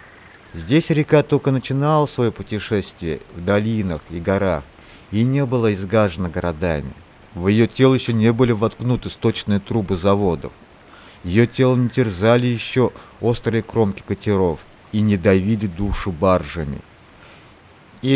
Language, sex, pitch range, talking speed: Russian, male, 95-120 Hz, 130 wpm